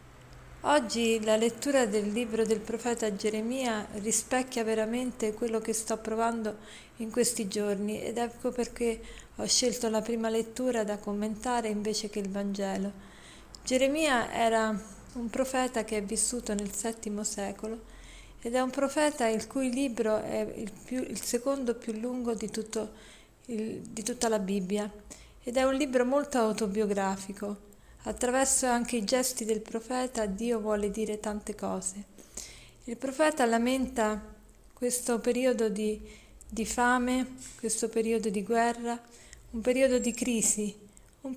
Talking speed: 135 wpm